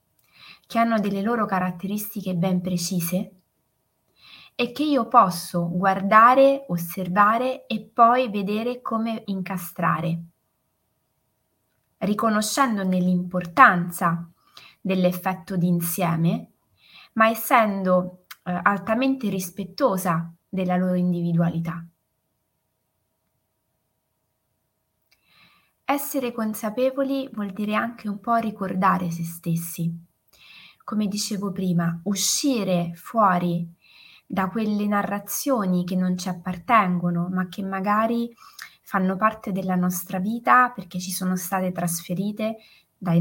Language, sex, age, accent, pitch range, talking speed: Italian, female, 20-39, native, 175-220 Hz, 95 wpm